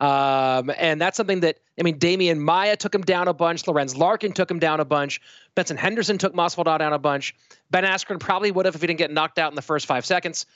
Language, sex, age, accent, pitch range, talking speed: English, male, 30-49, American, 155-195 Hz, 250 wpm